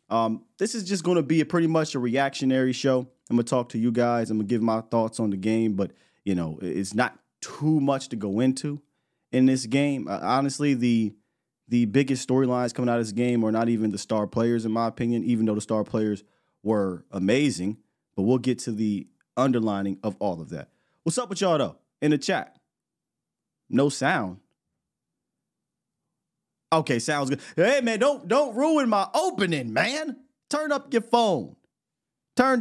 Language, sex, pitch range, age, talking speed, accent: English, male, 115-165 Hz, 30-49, 190 wpm, American